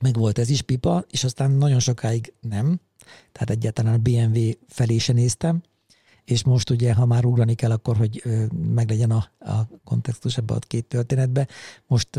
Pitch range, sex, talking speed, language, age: 110-130 Hz, male, 170 wpm, Hungarian, 50-69